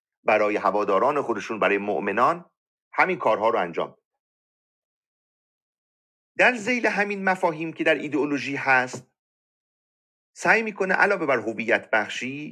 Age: 40-59